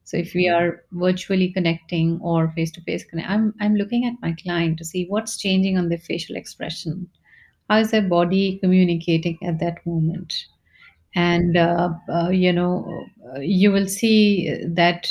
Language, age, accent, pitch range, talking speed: English, 30-49, Indian, 170-190 Hz, 165 wpm